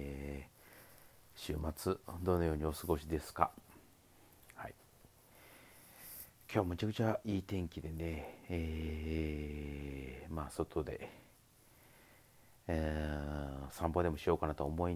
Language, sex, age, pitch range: Japanese, male, 40-59, 75-110 Hz